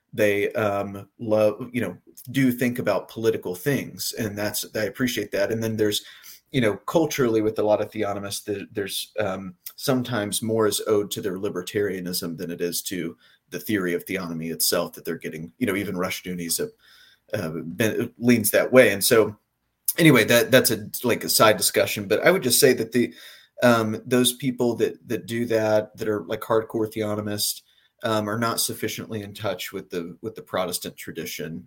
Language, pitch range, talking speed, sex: English, 100-115 Hz, 190 wpm, male